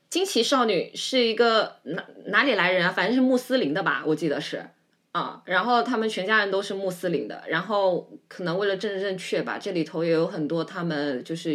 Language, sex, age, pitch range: Chinese, female, 20-39, 175-235 Hz